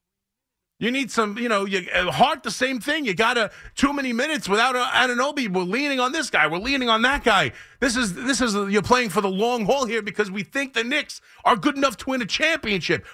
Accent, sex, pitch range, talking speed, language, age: American, male, 190-245 Hz, 230 wpm, English, 30-49